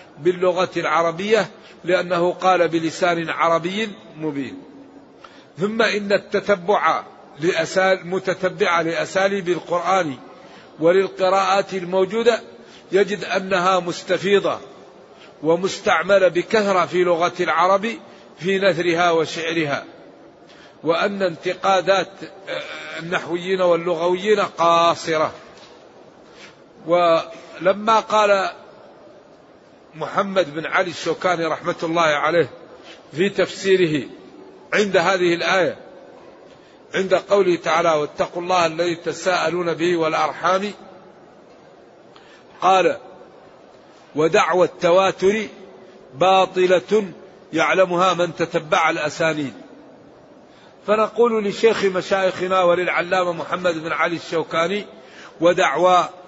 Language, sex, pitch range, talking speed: Arabic, male, 170-195 Hz, 75 wpm